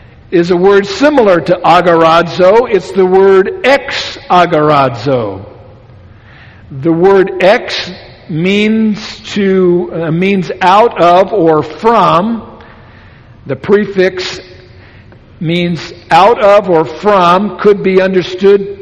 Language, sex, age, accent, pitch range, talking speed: English, male, 60-79, American, 130-195 Hz, 100 wpm